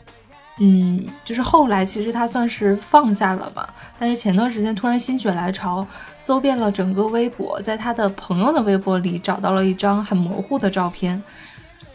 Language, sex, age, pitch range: Chinese, female, 20-39, 190-225 Hz